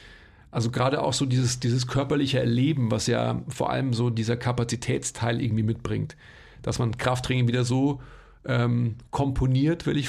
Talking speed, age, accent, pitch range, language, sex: 155 wpm, 40-59, German, 120-140 Hz, German, male